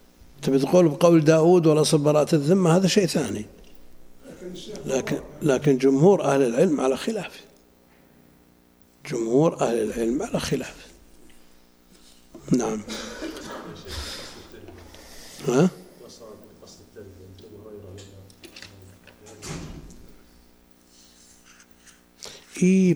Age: 50-69